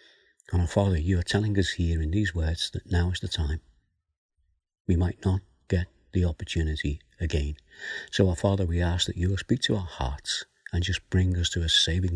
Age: 60-79